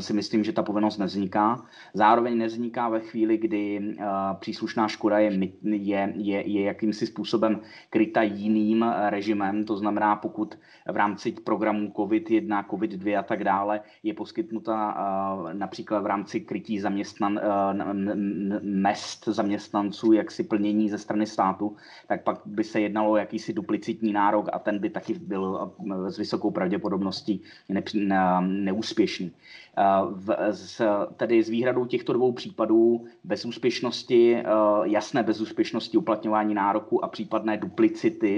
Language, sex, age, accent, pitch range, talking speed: Czech, male, 20-39, native, 100-110 Hz, 145 wpm